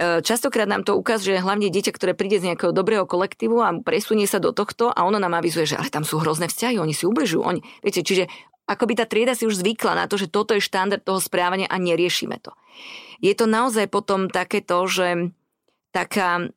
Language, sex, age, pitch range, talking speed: Slovak, female, 20-39, 175-205 Hz, 205 wpm